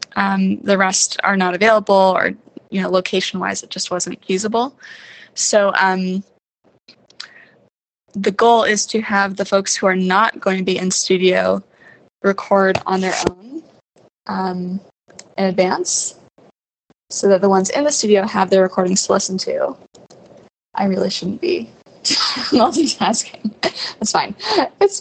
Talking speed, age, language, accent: 140 wpm, 20-39, English, American